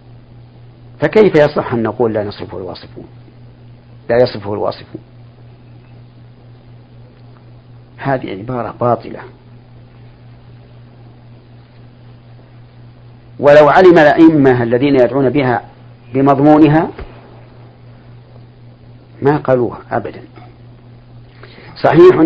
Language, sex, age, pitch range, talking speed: Arabic, male, 50-69, 120-125 Hz, 65 wpm